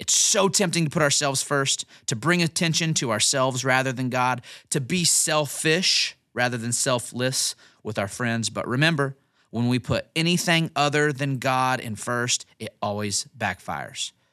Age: 30-49